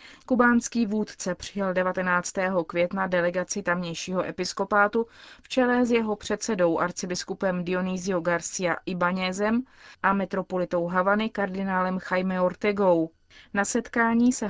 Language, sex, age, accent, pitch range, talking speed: Czech, female, 30-49, native, 180-215 Hz, 110 wpm